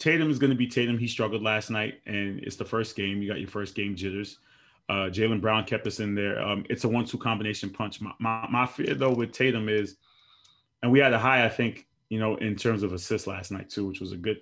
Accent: American